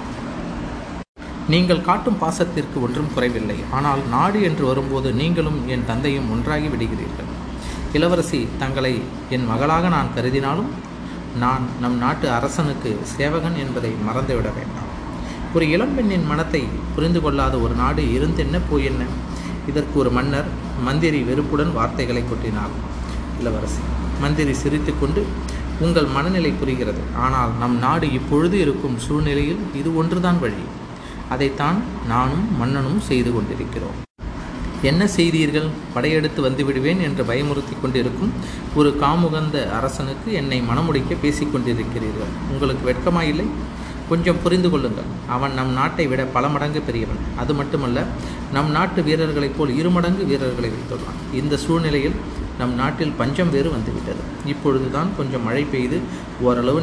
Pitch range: 115-155 Hz